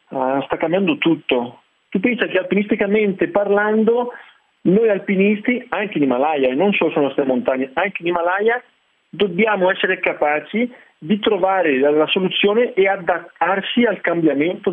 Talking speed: 145 wpm